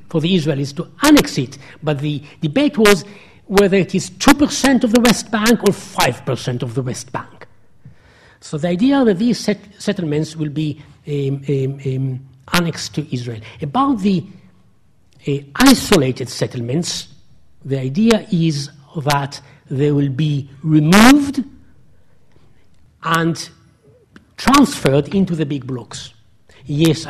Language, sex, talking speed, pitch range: English, male, 130 wpm, 135-185 Hz